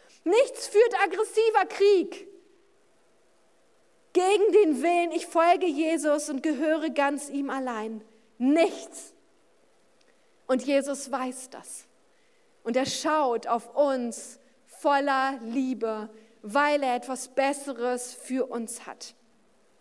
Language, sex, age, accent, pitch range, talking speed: German, female, 40-59, German, 290-385 Hz, 105 wpm